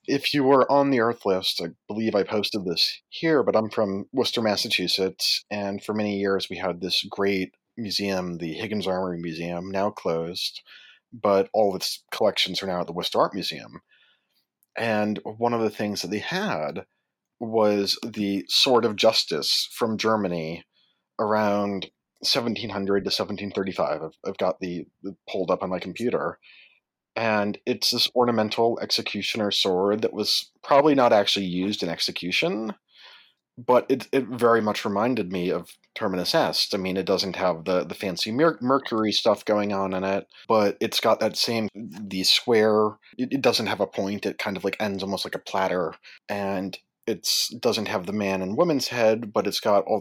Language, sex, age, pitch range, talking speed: English, male, 30-49, 95-110 Hz, 180 wpm